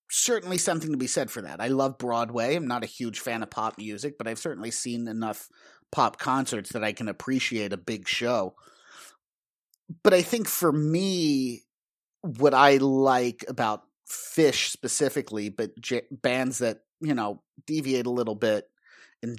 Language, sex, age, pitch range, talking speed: English, male, 30-49, 115-140 Hz, 165 wpm